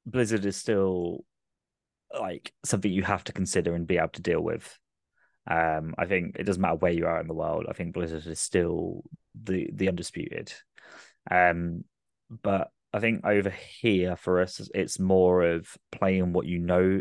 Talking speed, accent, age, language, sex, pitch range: 175 wpm, British, 20-39, English, male, 85-100 Hz